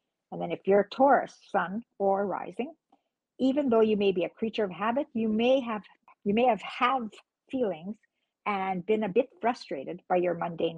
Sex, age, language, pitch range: female, 50-69, English, 180-250 Hz